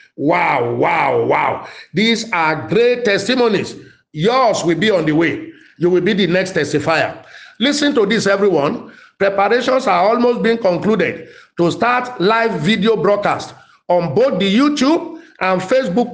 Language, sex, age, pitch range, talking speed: English, male, 50-69, 185-245 Hz, 145 wpm